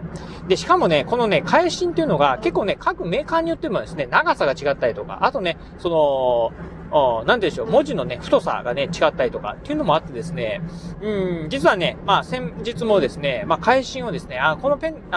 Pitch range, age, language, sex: 165-250 Hz, 40-59, Japanese, male